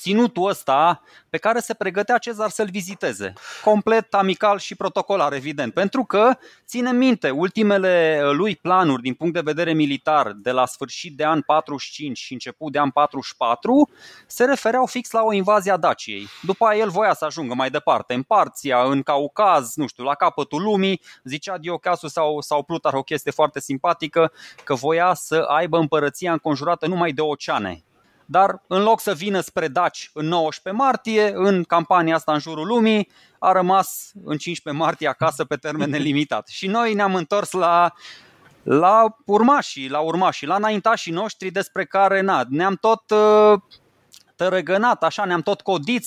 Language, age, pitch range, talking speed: Romanian, 20-39, 150-205 Hz, 165 wpm